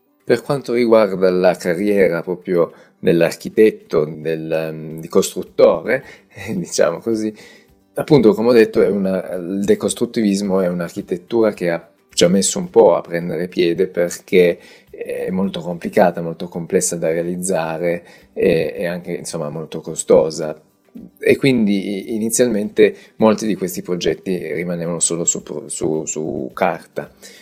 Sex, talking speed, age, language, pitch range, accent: male, 130 wpm, 30-49, Italian, 85-110 Hz, native